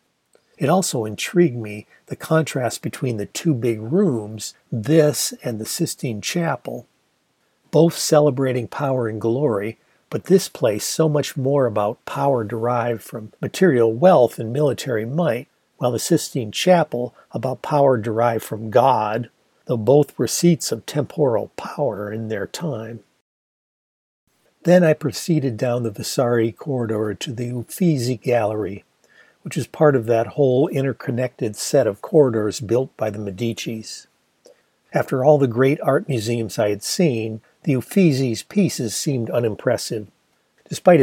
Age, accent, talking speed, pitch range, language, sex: 60-79, American, 140 wpm, 110-145 Hz, English, male